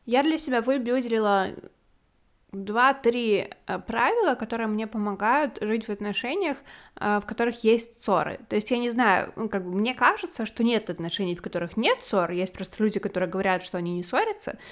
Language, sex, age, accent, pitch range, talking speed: Russian, female, 20-39, native, 195-240 Hz, 165 wpm